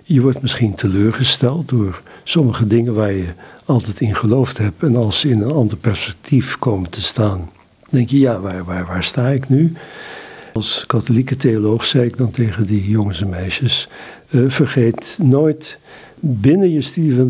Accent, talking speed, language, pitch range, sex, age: Dutch, 175 wpm, Dutch, 105-130 Hz, male, 60-79